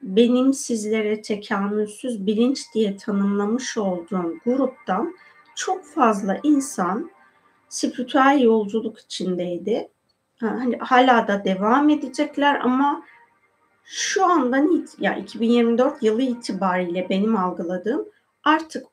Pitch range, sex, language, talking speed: 205-275 Hz, female, Turkish, 100 wpm